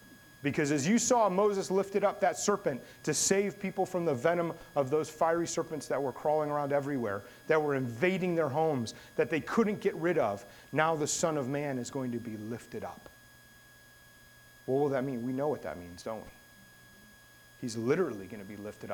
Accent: American